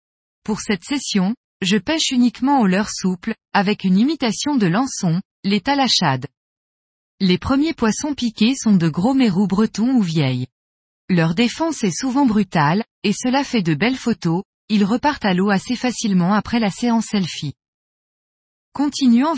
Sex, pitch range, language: female, 180-245 Hz, French